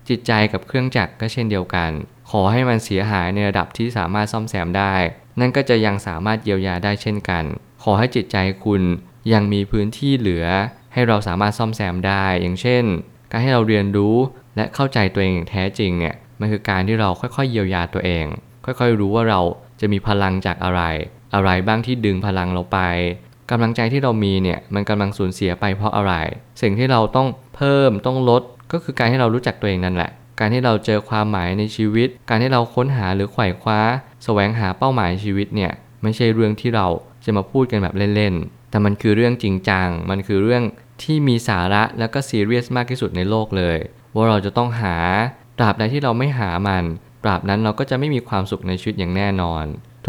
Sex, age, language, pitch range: male, 20-39, Thai, 95-120 Hz